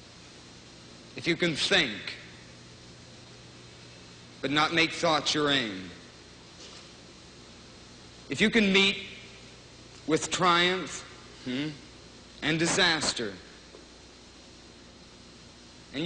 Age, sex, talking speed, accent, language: 50-69, male, 75 wpm, American, English